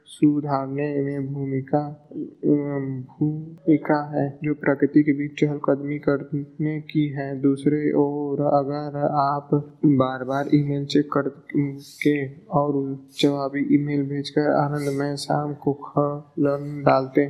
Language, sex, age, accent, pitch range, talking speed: Hindi, male, 20-39, native, 135-145 Hz, 120 wpm